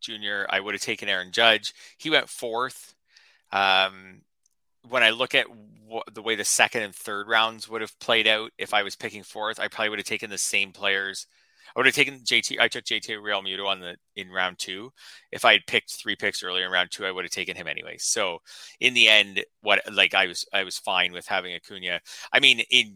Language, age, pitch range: English, 30-49, 100-135 Hz